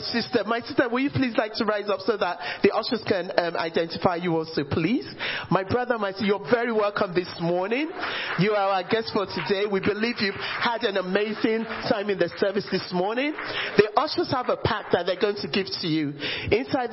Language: English